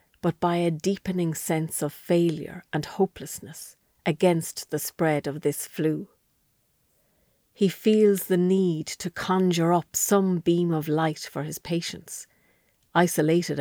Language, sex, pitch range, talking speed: English, female, 155-185 Hz, 130 wpm